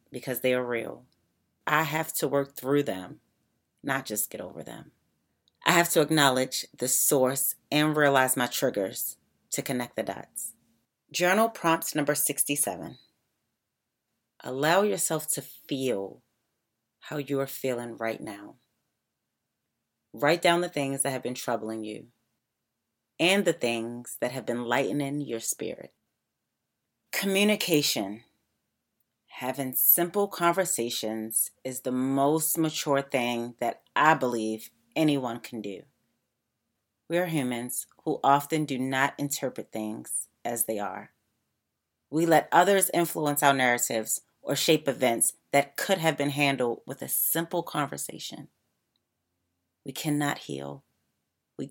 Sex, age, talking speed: female, 30-49, 130 wpm